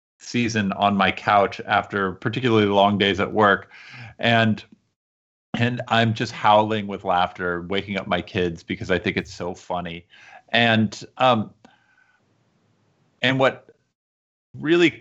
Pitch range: 100-120 Hz